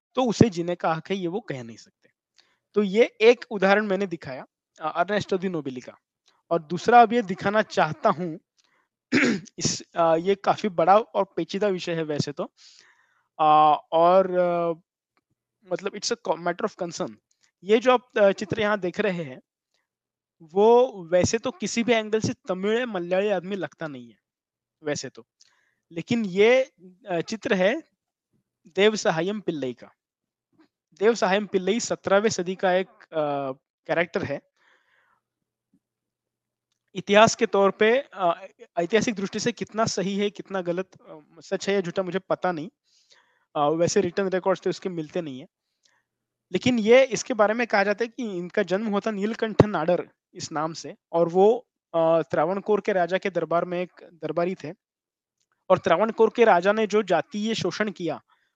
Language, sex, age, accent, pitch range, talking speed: English, male, 20-39, Indian, 170-215 Hz, 120 wpm